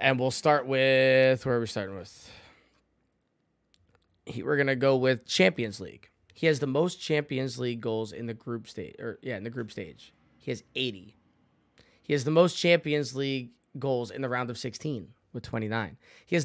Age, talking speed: 20-39, 190 wpm